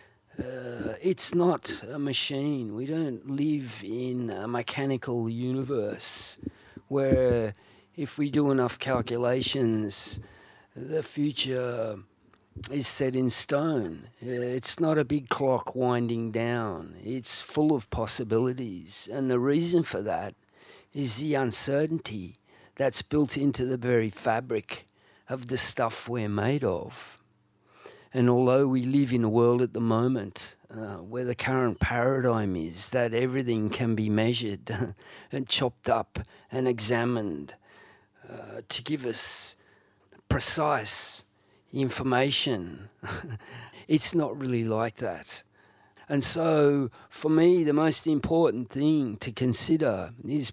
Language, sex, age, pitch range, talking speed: English, male, 50-69, 115-140 Hz, 120 wpm